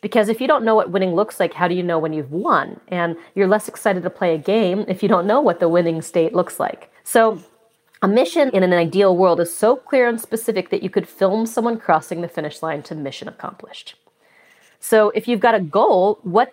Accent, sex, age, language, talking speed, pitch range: American, female, 30-49, English, 235 wpm, 175-215 Hz